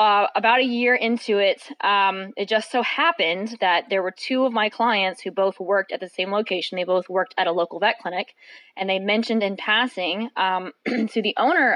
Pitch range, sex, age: 190-225 Hz, female, 20-39